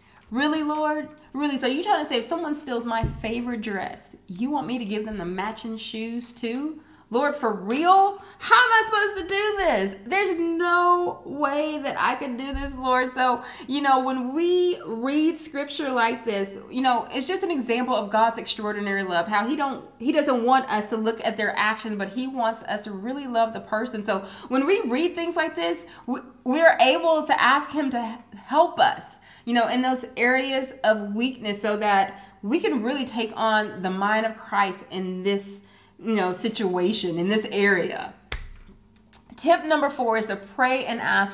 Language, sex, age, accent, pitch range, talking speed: English, female, 20-39, American, 195-275 Hz, 195 wpm